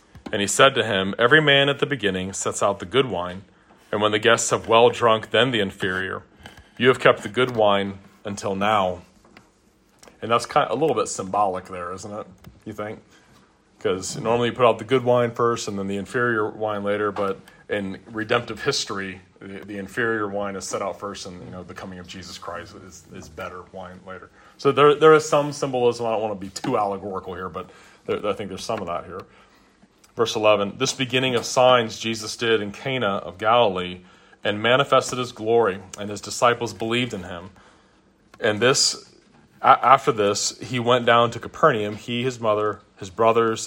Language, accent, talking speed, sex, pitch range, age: English, American, 200 wpm, male, 95-120 Hz, 30-49